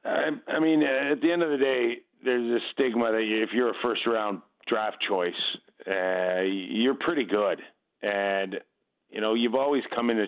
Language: English